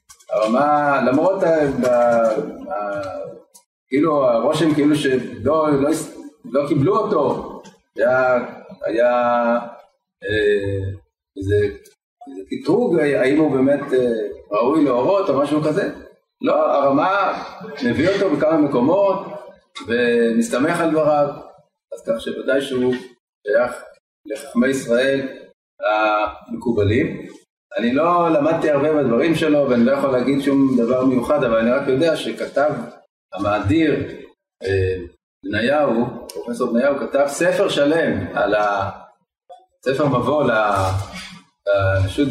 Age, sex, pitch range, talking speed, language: 30-49, male, 115-170 Hz, 100 wpm, Hebrew